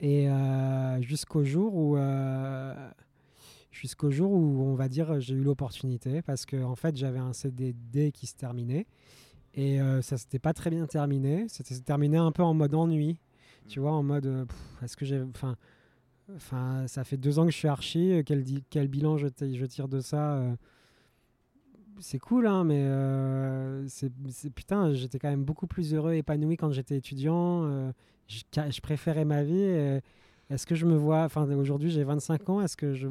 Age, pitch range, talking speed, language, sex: 20-39, 135-165 Hz, 200 wpm, French, male